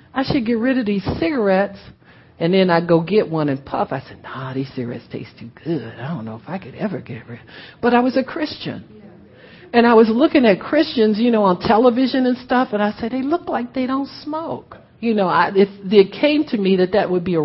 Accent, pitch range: American, 140-230 Hz